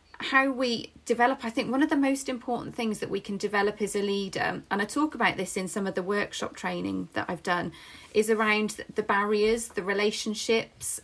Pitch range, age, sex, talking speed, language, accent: 200-230 Hz, 30-49, female, 205 wpm, English, British